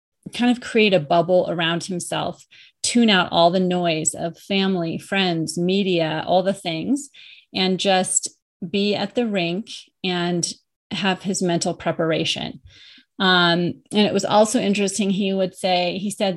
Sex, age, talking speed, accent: female, 30-49, 150 wpm, American